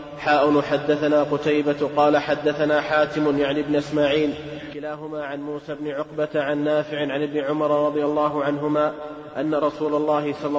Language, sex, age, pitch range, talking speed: Arabic, male, 30-49, 145-150 Hz, 145 wpm